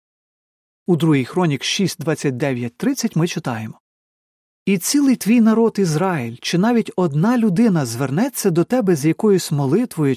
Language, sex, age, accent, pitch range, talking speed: Ukrainian, male, 40-59, native, 150-210 Hz, 135 wpm